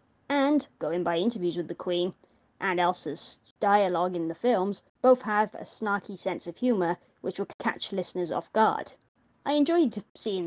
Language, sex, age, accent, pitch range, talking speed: English, female, 20-39, British, 190-245 Hz, 165 wpm